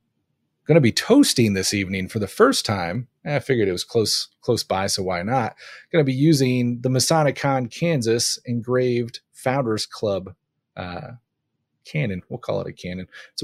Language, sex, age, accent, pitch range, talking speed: English, male, 30-49, American, 100-130 Hz, 175 wpm